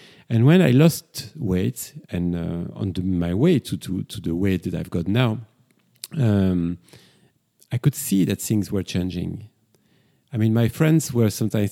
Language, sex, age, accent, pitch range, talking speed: English, male, 40-59, French, 95-125 Hz, 175 wpm